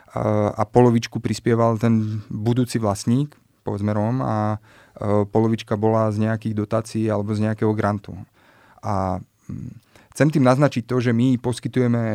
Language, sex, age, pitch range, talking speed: Slovak, male, 30-49, 105-120 Hz, 125 wpm